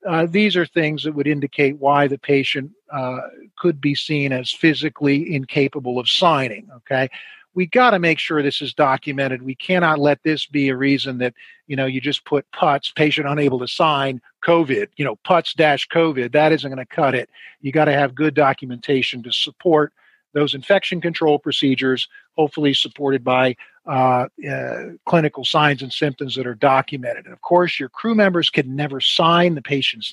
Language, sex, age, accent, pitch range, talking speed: English, male, 50-69, American, 130-155 Hz, 180 wpm